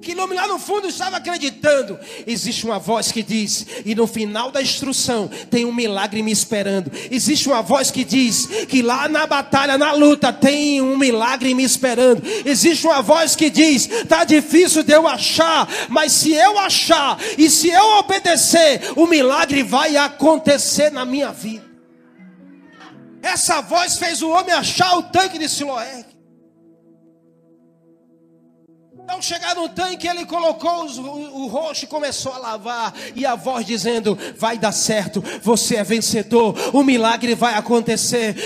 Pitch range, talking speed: 215-295 Hz, 160 wpm